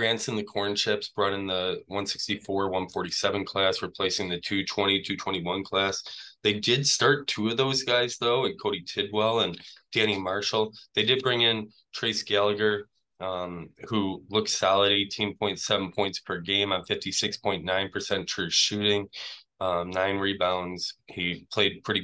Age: 20-39